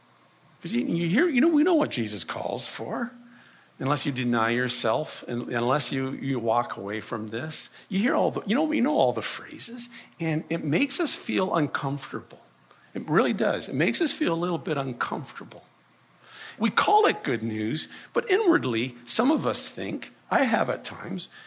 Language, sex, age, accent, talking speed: English, male, 50-69, American, 180 wpm